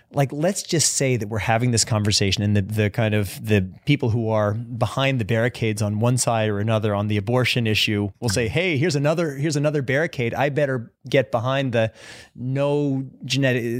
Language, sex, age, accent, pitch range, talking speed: English, male, 30-49, American, 115-145 Hz, 195 wpm